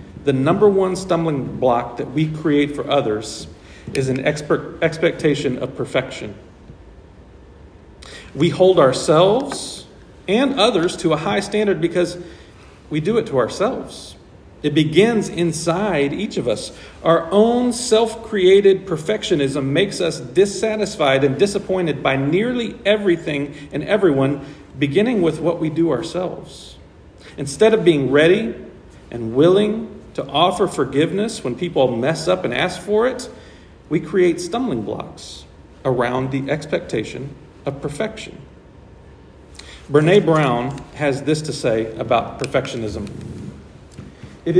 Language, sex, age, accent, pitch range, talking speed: English, male, 40-59, American, 130-195 Hz, 125 wpm